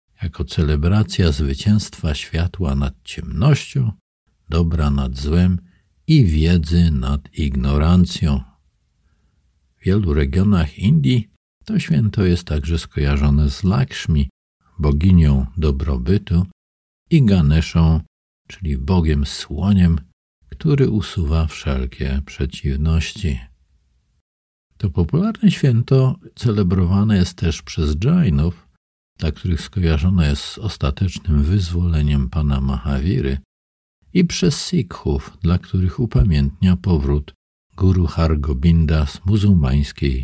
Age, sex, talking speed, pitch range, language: 50-69, male, 95 wpm, 70-100 Hz, Polish